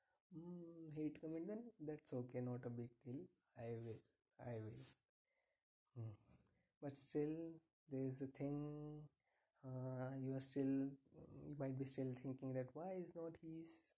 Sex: male